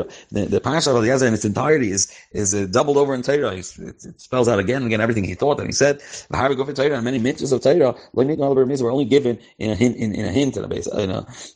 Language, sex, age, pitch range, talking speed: English, male, 30-49, 100-125 Hz, 270 wpm